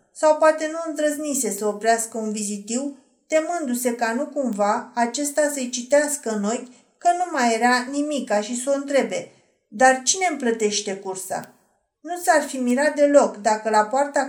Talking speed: 160 wpm